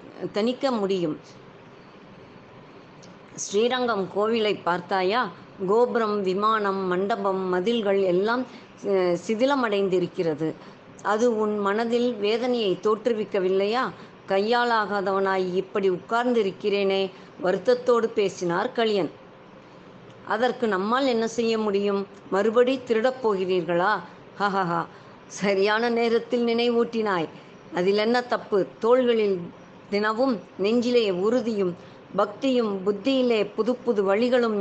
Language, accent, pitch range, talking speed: Tamil, native, 190-235 Hz, 70 wpm